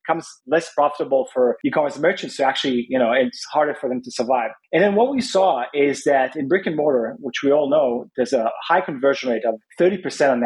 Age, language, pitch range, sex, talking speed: 30-49, English, 130-165 Hz, male, 235 wpm